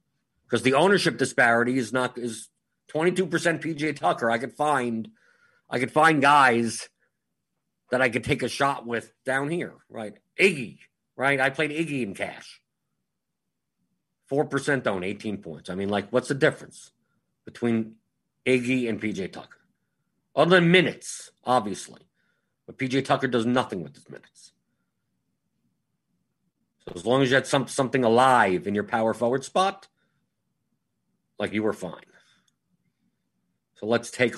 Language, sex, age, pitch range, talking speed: English, male, 50-69, 120-165 Hz, 150 wpm